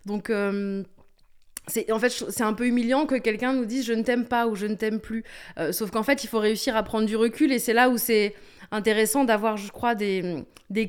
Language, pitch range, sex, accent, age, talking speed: French, 205-250 Hz, female, French, 20-39, 265 wpm